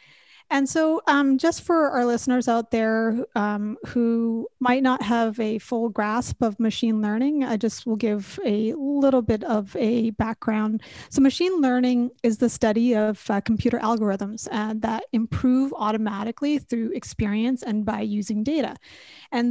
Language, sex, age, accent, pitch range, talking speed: English, female, 30-49, American, 220-255 Hz, 155 wpm